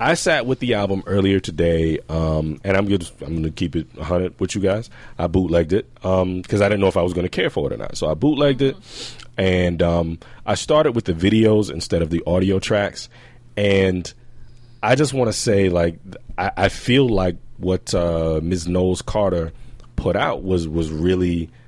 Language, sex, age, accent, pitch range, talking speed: English, male, 30-49, American, 80-105 Hz, 210 wpm